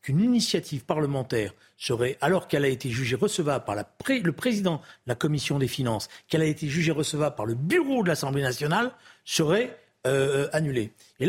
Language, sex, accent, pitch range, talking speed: French, male, French, 125-185 Hz, 190 wpm